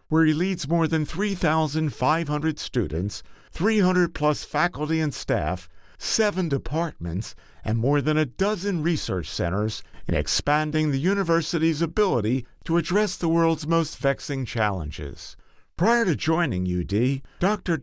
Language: English